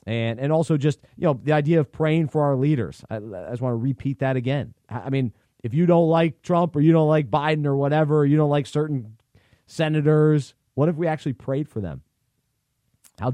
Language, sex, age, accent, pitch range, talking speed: English, male, 30-49, American, 120-155 Hz, 220 wpm